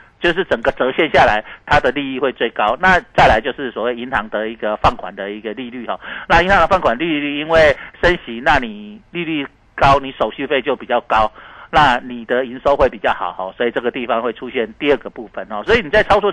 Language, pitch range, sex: Chinese, 125-190 Hz, male